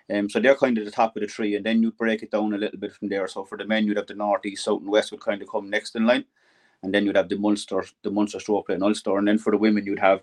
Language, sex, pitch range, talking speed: English, male, 105-120 Hz, 340 wpm